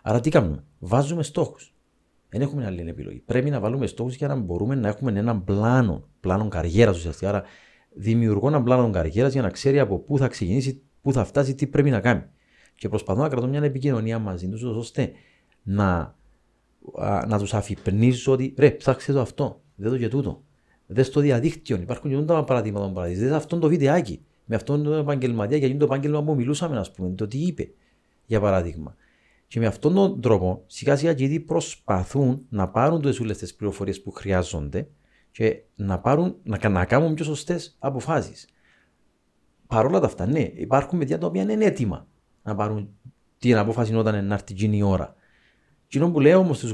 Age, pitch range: 40-59, 105-145 Hz